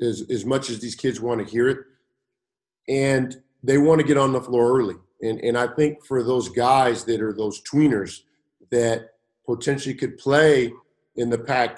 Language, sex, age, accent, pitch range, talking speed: English, male, 50-69, American, 115-140 Hz, 190 wpm